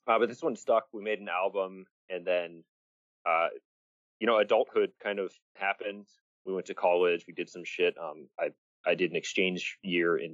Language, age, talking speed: English, 30-49, 195 wpm